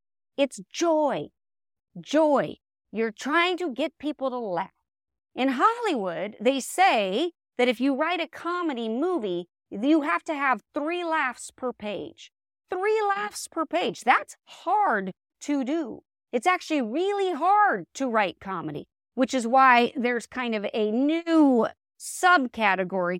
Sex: female